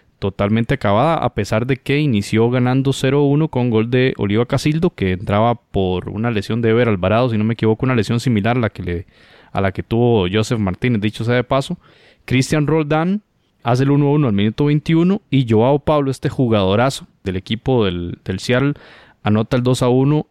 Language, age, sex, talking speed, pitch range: Spanish, 20-39, male, 195 wpm, 110-135 Hz